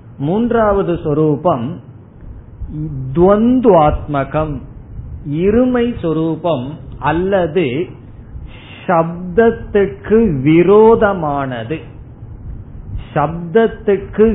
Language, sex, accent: Tamil, male, native